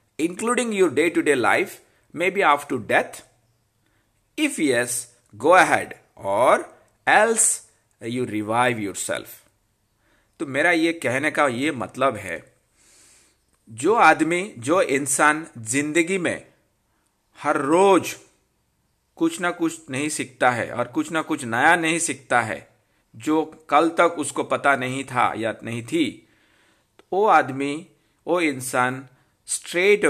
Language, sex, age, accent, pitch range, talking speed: Hindi, male, 50-69, native, 120-170 Hz, 130 wpm